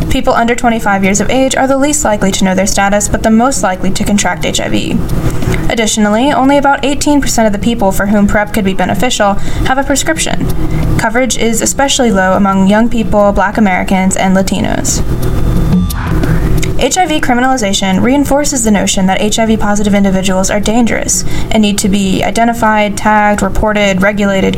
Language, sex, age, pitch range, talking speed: English, female, 10-29, 195-235 Hz, 165 wpm